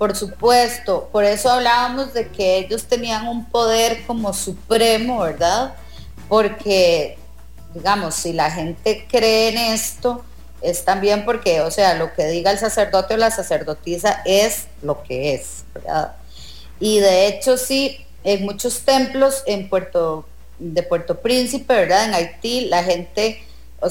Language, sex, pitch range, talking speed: English, female, 175-230 Hz, 145 wpm